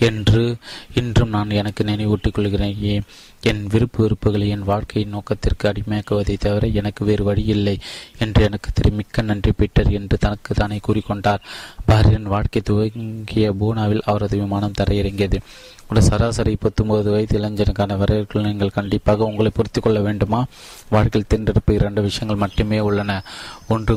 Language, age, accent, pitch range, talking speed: Tamil, 20-39, native, 100-110 Hz, 130 wpm